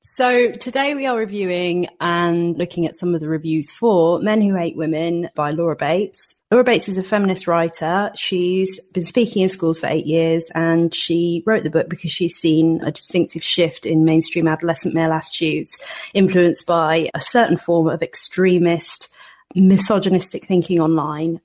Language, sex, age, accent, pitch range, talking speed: English, female, 30-49, British, 165-185 Hz, 170 wpm